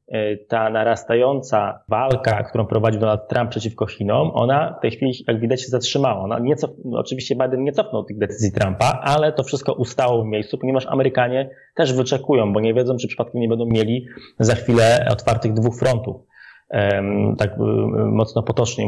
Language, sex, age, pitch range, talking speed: Polish, male, 20-39, 110-125 Hz, 165 wpm